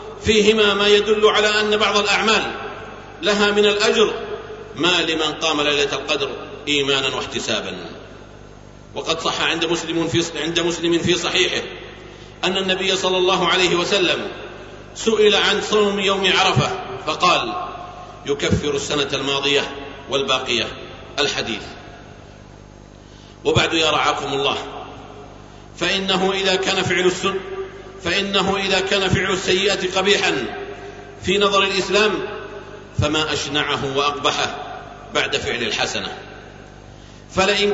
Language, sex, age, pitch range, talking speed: Arabic, male, 50-69, 155-210 Hz, 105 wpm